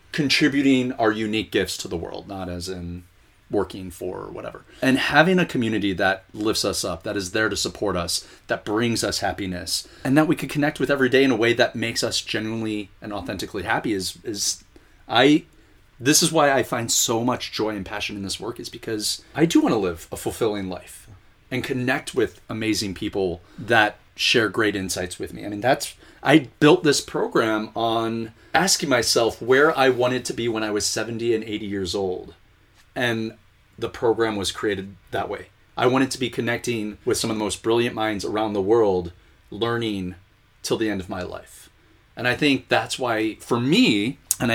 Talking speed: 195 wpm